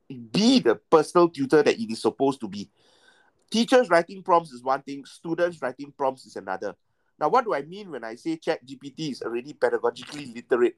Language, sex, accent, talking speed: English, male, Malaysian, 195 wpm